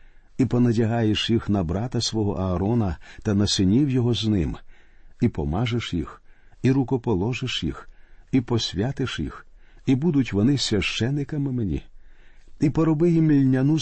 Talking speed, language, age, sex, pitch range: 130 wpm, Ukrainian, 50-69, male, 95-130 Hz